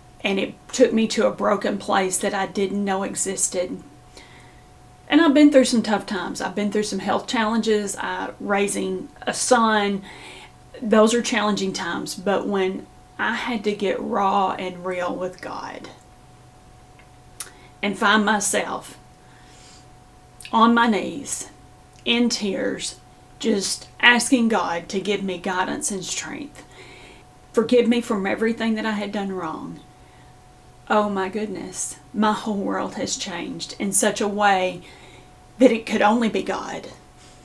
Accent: American